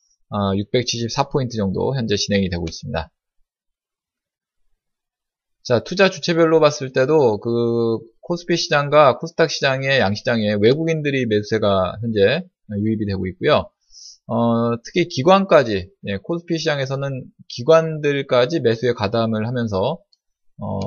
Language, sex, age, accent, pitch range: Korean, male, 20-39, native, 105-165 Hz